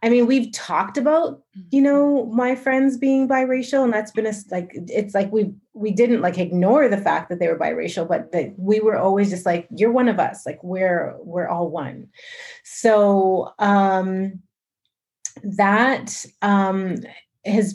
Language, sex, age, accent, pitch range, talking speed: English, female, 30-49, American, 175-215 Hz, 170 wpm